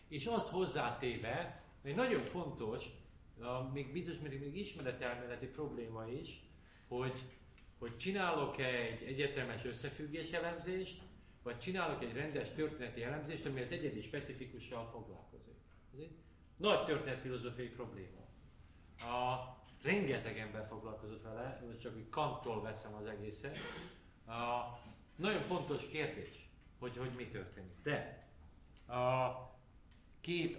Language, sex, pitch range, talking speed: Hungarian, male, 110-135 Hz, 120 wpm